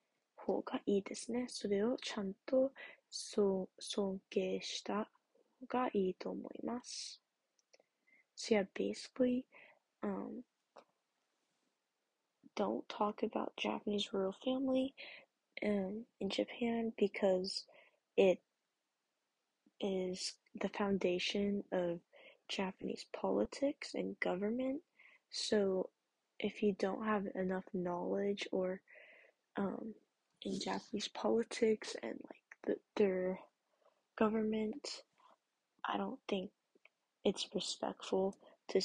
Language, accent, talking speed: English, American, 70 wpm